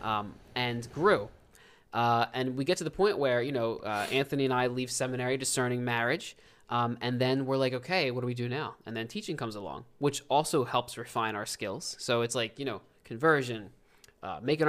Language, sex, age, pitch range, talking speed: English, male, 20-39, 115-135 Hz, 210 wpm